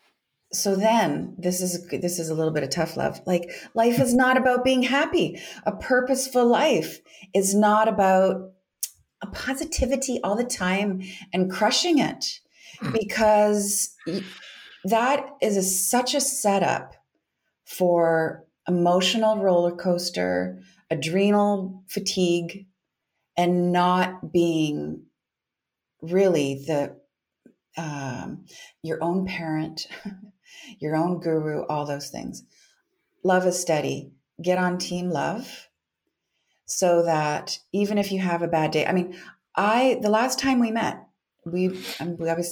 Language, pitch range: English, 170-210 Hz